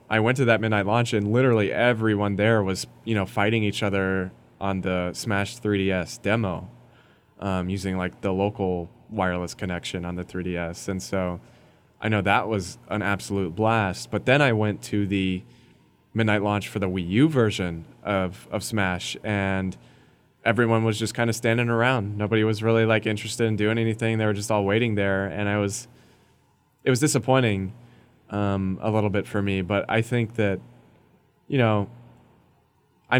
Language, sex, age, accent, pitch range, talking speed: English, male, 20-39, American, 95-115 Hz, 175 wpm